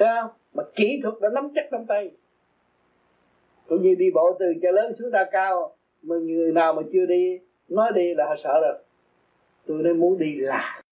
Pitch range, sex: 155-225 Hz, male